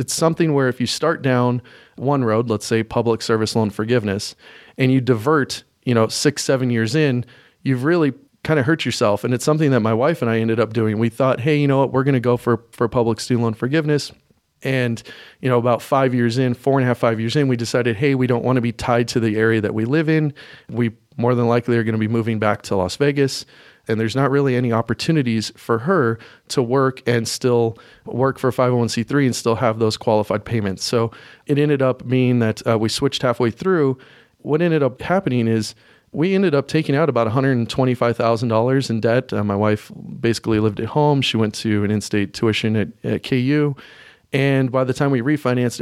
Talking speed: 215 wpm